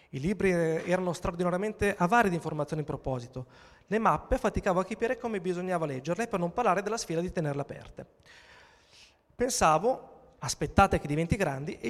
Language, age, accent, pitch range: Italian, 30-49, native, 140-195 Hz